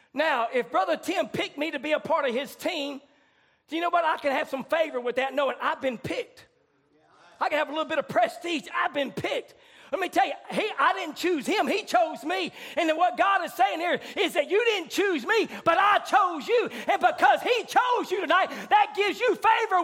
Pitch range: 280-385 Hz